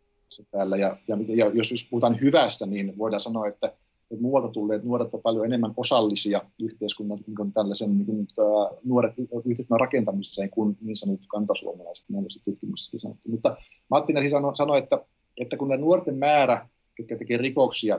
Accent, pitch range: native, 105-125 Hz